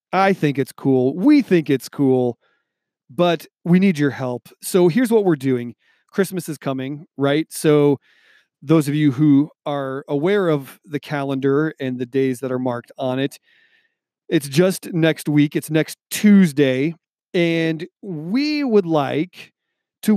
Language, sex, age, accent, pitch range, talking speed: English, male, 40-59, American, 135-190 Hz, 155 wpm